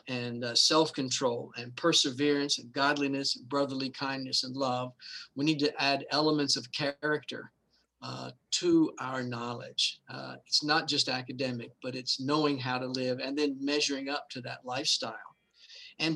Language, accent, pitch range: English, American, 135-165 Hz